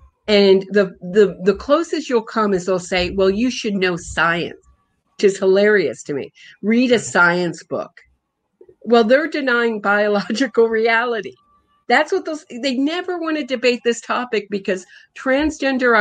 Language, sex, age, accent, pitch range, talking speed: English, female, 50-69, American, 200-275 Hz, 150 wpm